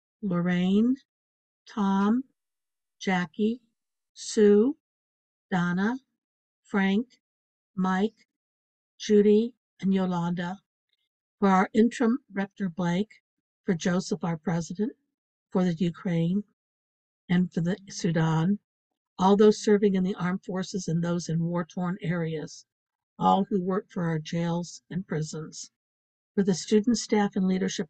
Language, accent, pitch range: English, American, 170-205 Hz